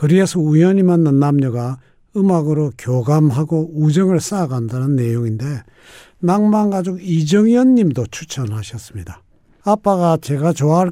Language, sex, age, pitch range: Korean, male, 60-79, 130-180 Hz